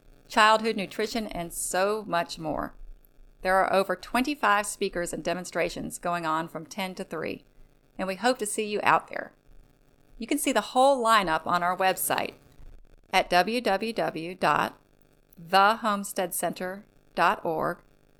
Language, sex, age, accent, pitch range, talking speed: English, female, 30-49, American, 175-230 Hz, 125 wpm